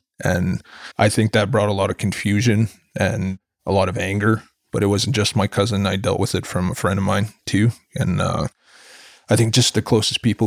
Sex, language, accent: male, English, American